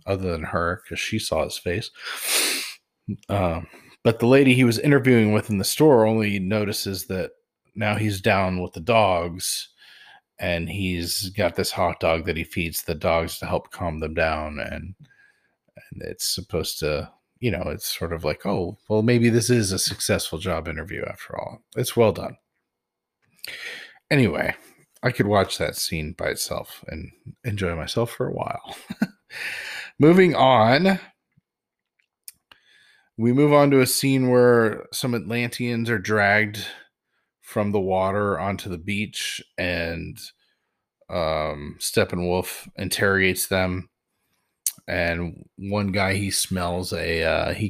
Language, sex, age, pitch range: English, male, 40-59, 90-115 Hz